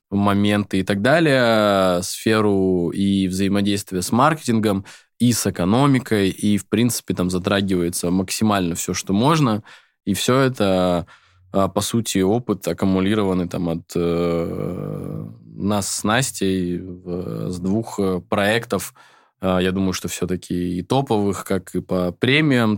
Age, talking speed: 20-39, 130 wpm